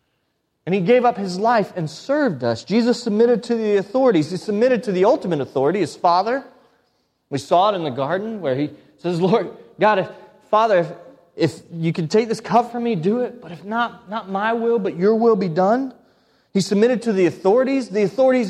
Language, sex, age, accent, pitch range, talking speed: English, male, 30-49, American, 140-220 Hz, 210 wpm